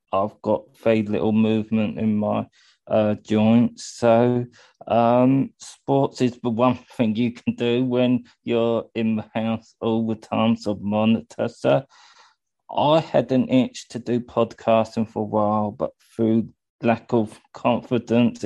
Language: English